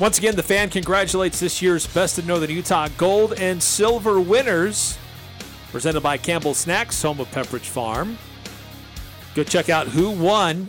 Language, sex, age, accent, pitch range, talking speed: English, male, 40-59, American, 130-175 Hz, 155 wpm